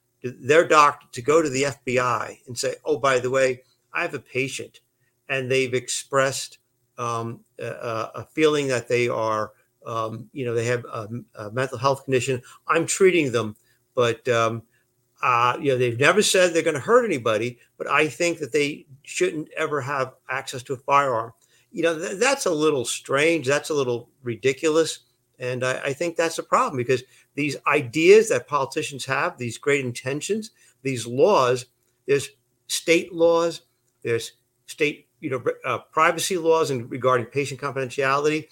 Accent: American